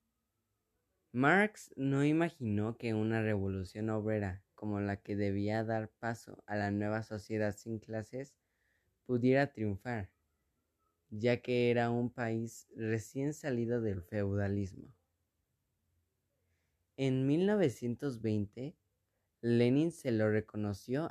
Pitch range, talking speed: 105-125 Hz, 100 wpm